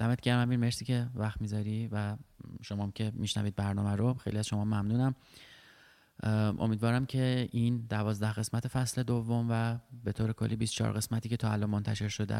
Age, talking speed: 20-39, 170 wpm